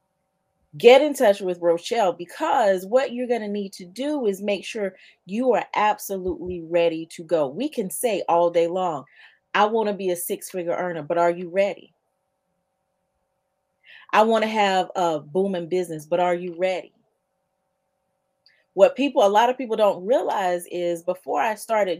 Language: English